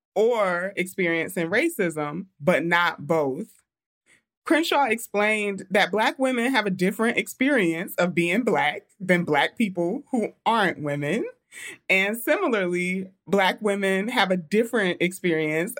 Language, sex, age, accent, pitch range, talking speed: English, male, 30-49, American, 165-215 Hz, 125 wpm